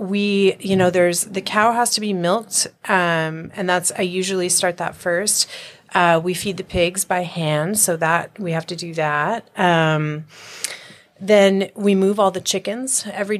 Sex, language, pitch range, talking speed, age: female, English, 170-200 Hz, 180 wpm, 30-49